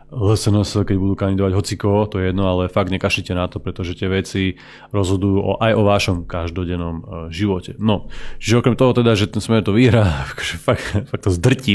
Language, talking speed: Slovak, 180 wpm